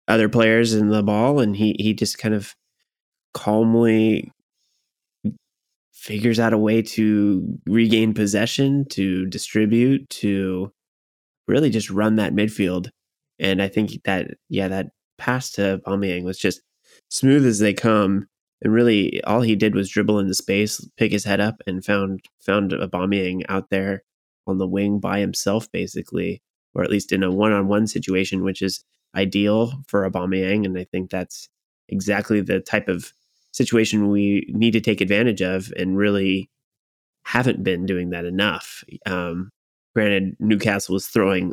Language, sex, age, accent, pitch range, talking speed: English, male, 20-39, American, 95-110 Hz, 155 wpm